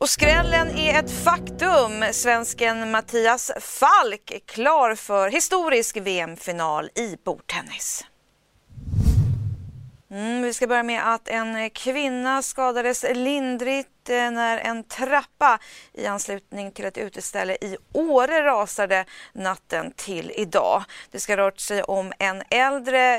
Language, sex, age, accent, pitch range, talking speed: Swedish, female, 30-49, native, 200-255 Hz, 120 wpm